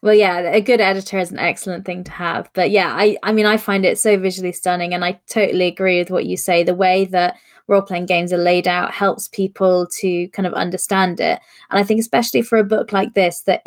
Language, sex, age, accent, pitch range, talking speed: English, female, 20-39, British, 180-205 Hz, 240 wpm